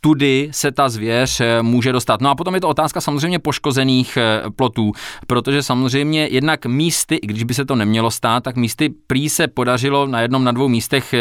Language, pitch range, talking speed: Czech, 110-135 Hz, 195 wpm